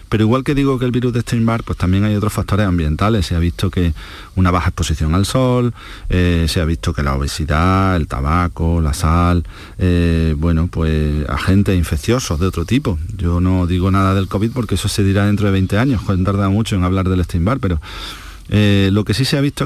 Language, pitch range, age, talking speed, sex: Spanish, 90-115 Hz, 40-59, 225 wpm, male